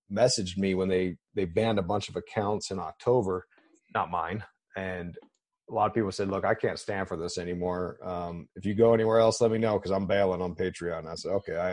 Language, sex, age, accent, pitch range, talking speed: English, male, 30-49, American, 95-120 Hz, 230 wpm